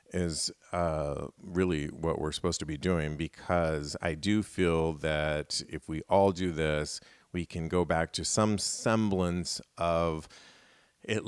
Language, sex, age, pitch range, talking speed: English, male, 40-59, 80-100 Hz, 150 wpm